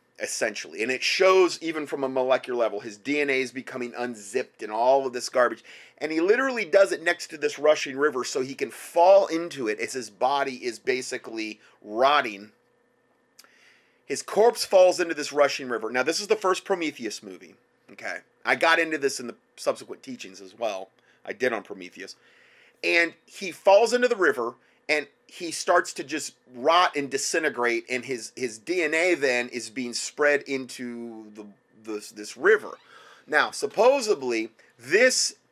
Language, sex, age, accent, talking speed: English, male, 30-49, American, 170 wpm